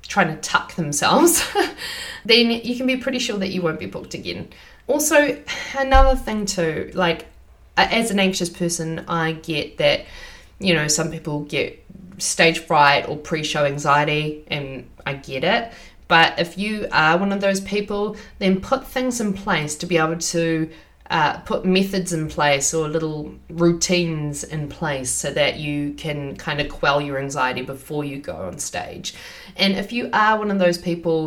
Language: English